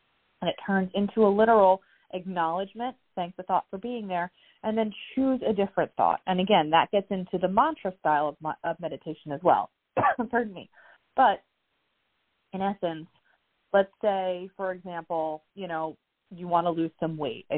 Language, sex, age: English, female, 30-49